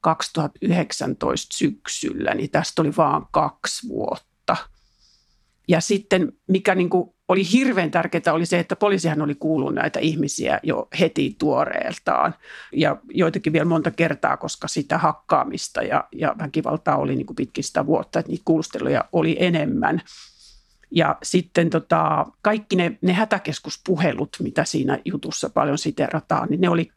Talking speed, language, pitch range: 135 wpm, Finnish, 160-200 Hz